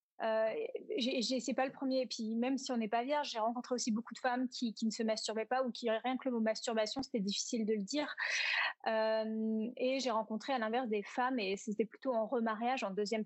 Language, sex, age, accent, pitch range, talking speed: French, female, 20-39, French, 220-265 Hz, 245 wpm